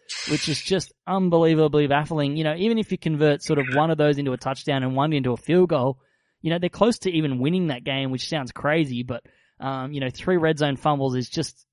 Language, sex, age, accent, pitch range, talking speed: English, male, 20-39, Australian, 130-155 Hz, 240 wpm